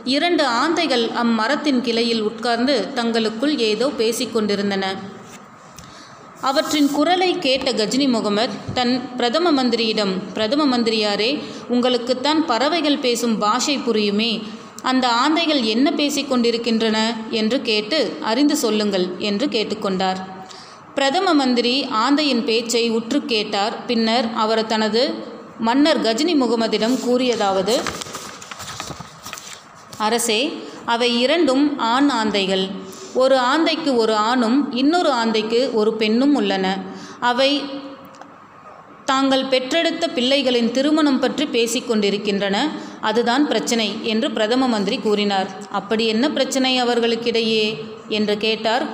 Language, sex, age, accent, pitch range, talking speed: Tamil, female, 30-49, native, 215-270 Hz, 95 wpm